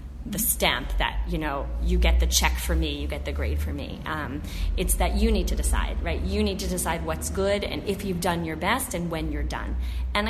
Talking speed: 245 wpm